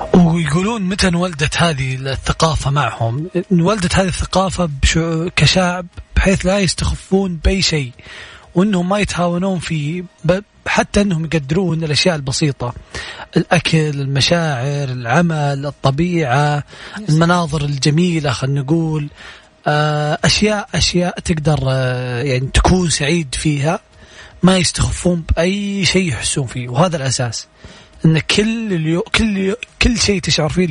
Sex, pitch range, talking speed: male, 140-180 Hz, 105 wpm